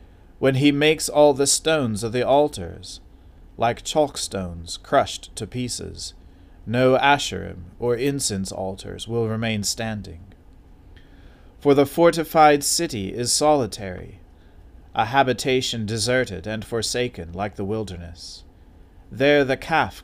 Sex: male